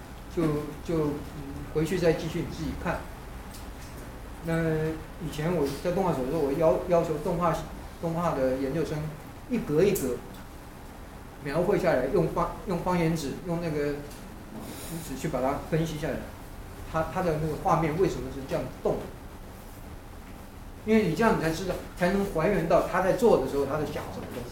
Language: Chinese